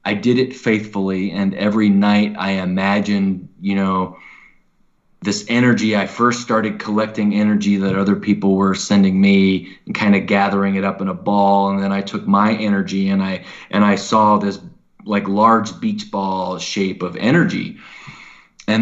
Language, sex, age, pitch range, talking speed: English, male, 20-39, 95-115 Hz, 170 wpm